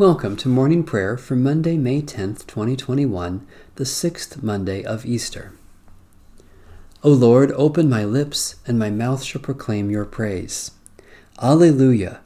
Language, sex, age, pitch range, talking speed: English, male, 40-59, 95-135 Hz, 130 wpm